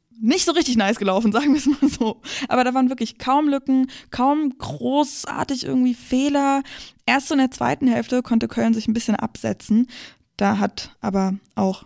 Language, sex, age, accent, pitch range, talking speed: German, female, 20-39, German, 215-265 Hz, 180 wpm